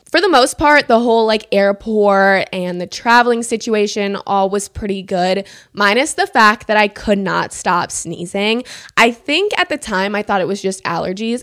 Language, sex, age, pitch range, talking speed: English, female, 20-39, 190-225 Hz, 190 wpm